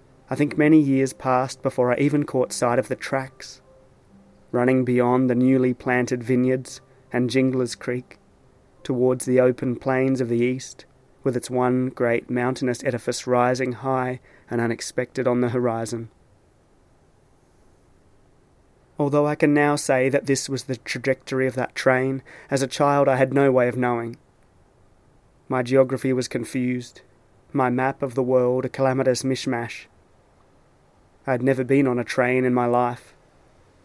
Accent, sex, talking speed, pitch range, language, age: Australian, male, 150 wpm, 125-135 Hz, English, 30-49